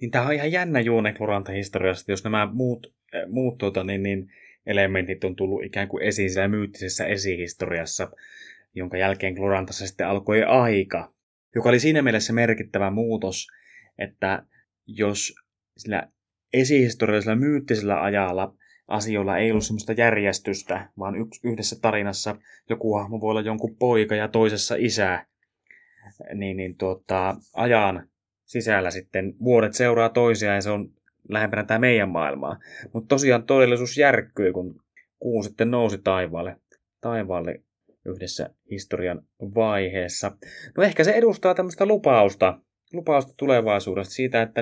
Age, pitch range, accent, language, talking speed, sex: 20-39, 95-115 Hz, native, Finnish, 130 wpm, male